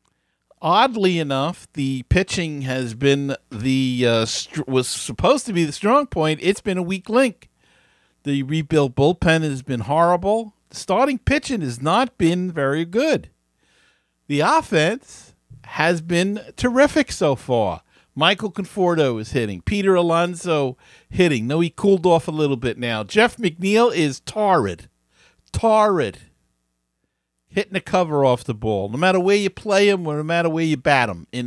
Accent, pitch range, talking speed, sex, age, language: American, 125-190 Hz, 155 wpm, male, 50-69, English